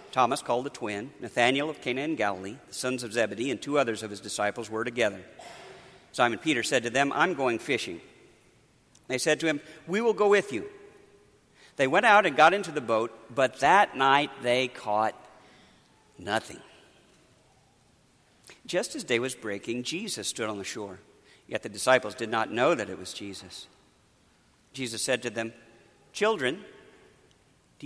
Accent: American